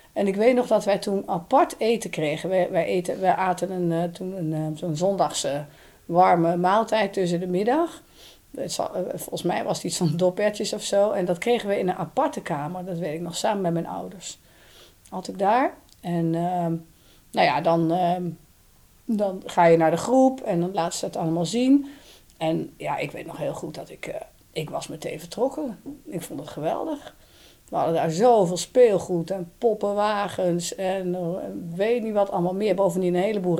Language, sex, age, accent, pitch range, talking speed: Dutch, female, 40-59, Dutch, 170-205 Hz, 180 wpm